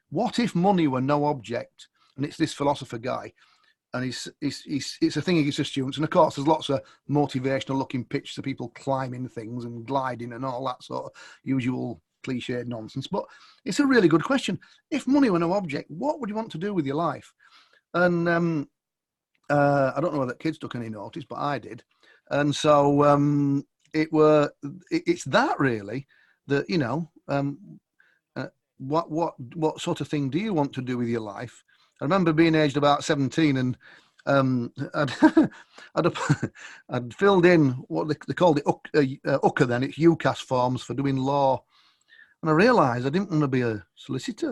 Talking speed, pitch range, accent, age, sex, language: 195 wpm, 130-165 Hz, British, 40-59, male, English